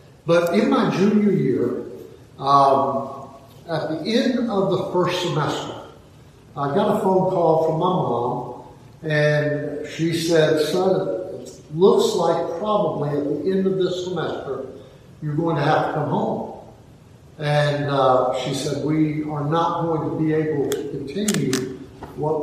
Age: 60-79